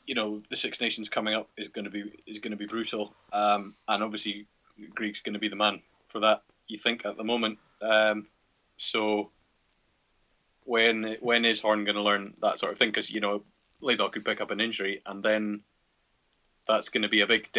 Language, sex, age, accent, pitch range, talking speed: English, male, 20-39, British, 100-110 Hz, 215 wpm